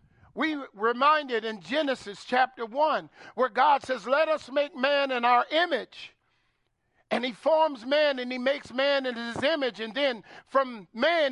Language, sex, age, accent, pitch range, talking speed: English, male, 50-69, American, 245-310 Hz, 165 wpm